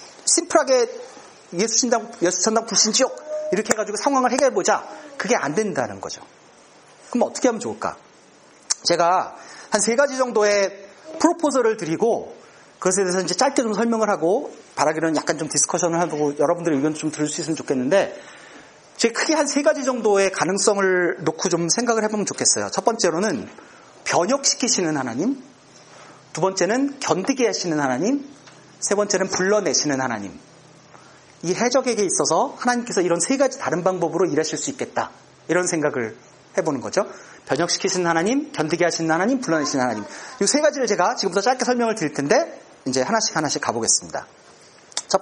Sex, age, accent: male, 40-59, native